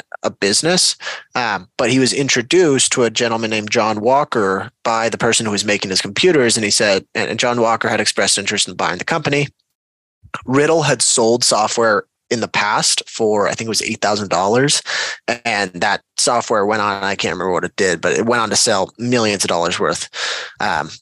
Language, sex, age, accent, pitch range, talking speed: English, male, 30-49, American, 105-125 Hz, 195 wpm